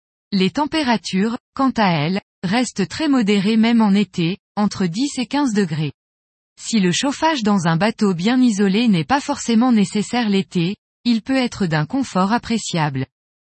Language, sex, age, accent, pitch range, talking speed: French, female, 20-39, French, 180-245 Hz, 155 wpm